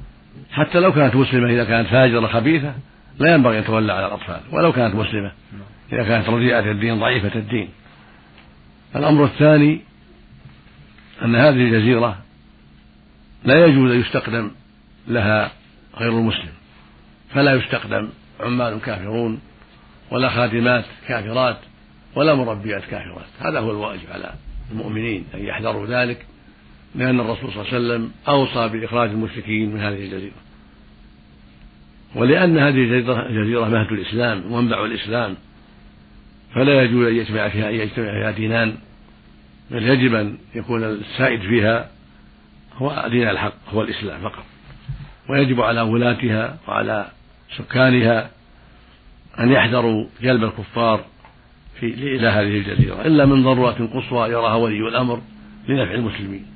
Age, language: 60-79, Arabic